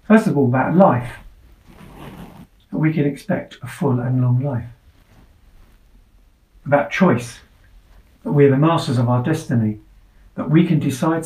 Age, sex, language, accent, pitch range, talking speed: 50-69, male, English, British, 95-150 Hz, 145 wpm